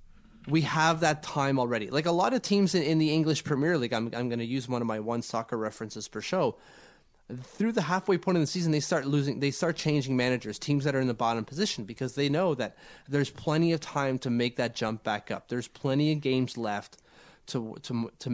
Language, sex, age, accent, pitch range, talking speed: English, male, 30-49, American, 110-160 Hz, 235 wpm